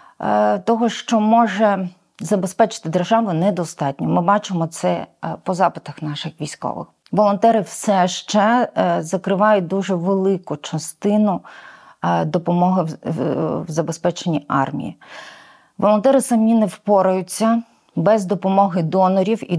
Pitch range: 170-210 Hz